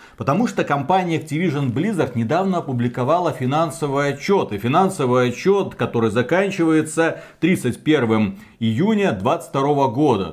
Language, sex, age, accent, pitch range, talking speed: Russian, male, 40-59, native, 125-180 Hz, 105 wpm